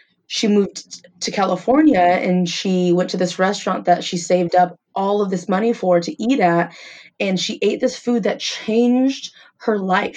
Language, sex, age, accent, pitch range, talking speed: English, female, 20-39, American, 175-205 Hz, 185 wpm